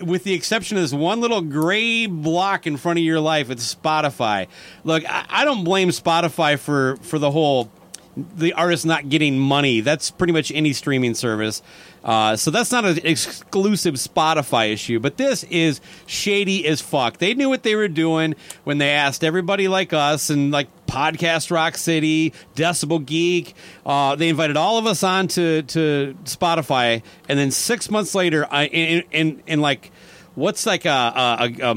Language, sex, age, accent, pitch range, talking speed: English, male, 40-59, American, 140-190 Hz, 175 wpm